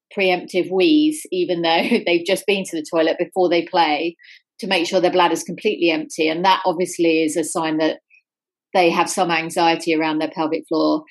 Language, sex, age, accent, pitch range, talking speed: English, female, 30-49, British, 165-195 Hz, 195 wpm